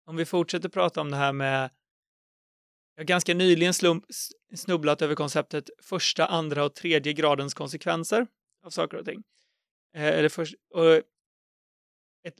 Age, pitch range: 30-49, 150-175 Hz